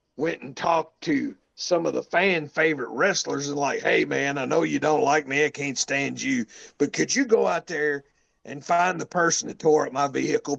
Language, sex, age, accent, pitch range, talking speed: English, male, 50-69, American, 145-190 Hz, 220 wpm